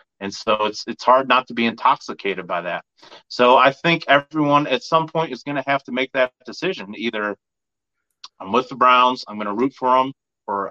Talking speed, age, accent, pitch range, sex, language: 215 wpm, 30-49, American, 110-135 Hz, male, English